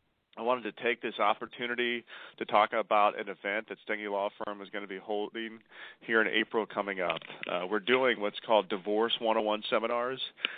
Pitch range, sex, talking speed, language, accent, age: 100-115 Hz, male, 185 wpm, English, American, 40-59